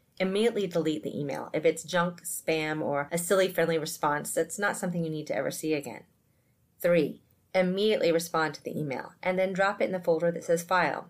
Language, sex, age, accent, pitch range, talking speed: English, female, 30-49, American, 150-185 Hz, 205 wpm